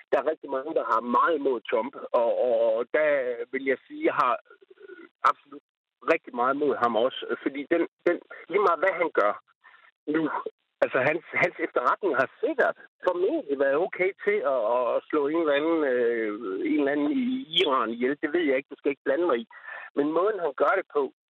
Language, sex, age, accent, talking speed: Danish, male, 60-79, native, 205 wpm